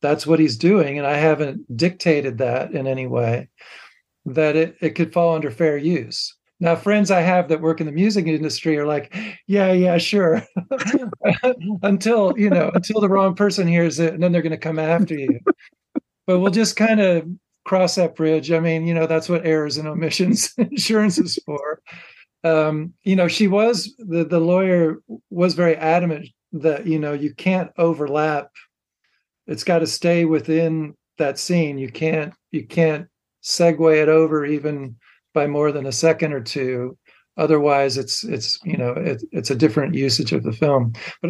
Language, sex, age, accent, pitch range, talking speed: English, male, 50-69, American, 150-180 Hz, 180 wpm